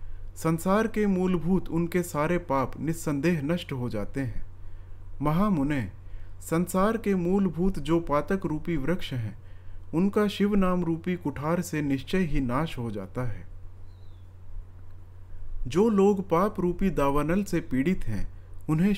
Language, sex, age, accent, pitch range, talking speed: Hindi, male, 40-59, native, 105-180 Hz, 130 wpm